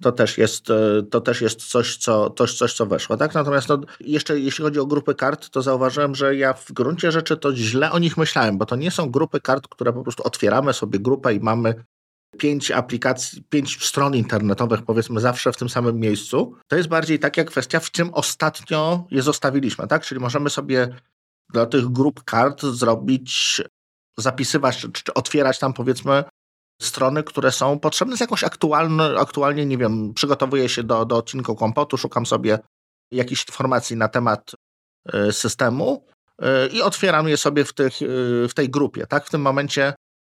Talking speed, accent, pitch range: 175 wpm, native, 120-150 Hz